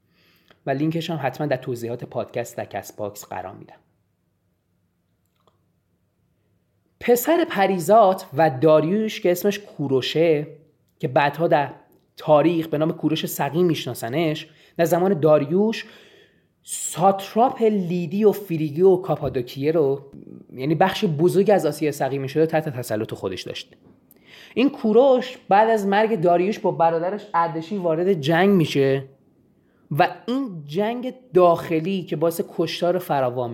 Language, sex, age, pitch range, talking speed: English, male, 30-49, 140-195 Hz, 120 wpm